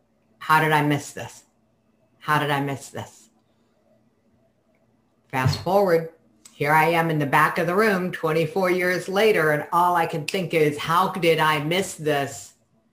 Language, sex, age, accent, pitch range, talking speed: English, female, 50-69, American, 145-200 Hz, 160 wpm